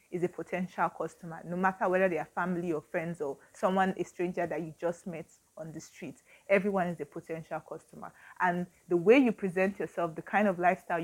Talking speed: 205 wpm